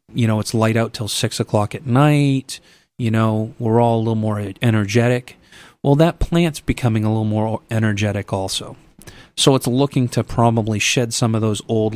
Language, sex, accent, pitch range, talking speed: English, male, American, 110-130 Hz, 185 wpm